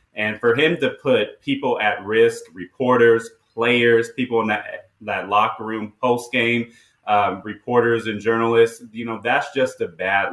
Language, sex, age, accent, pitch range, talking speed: English, male, 30-49, American, 110-175 Hz, 155 wpm